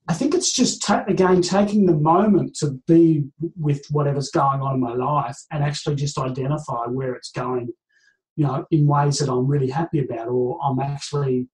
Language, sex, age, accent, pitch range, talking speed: English, male, 30-49, Australian, 130-165 Hz, 185 wpm